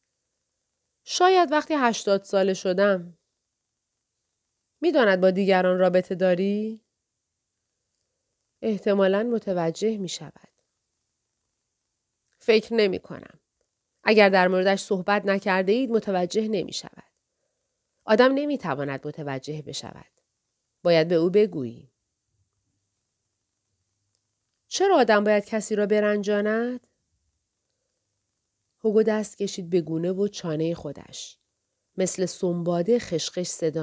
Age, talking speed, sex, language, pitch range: 30-49, 90 wpm, female, Persian, 165-220 Hz